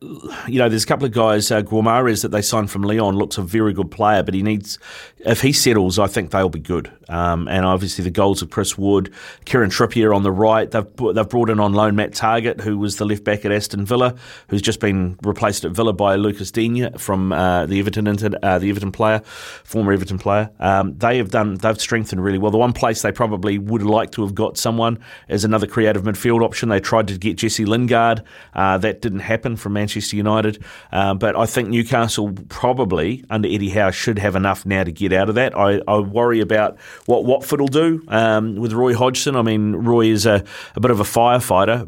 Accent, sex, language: Australian, male, English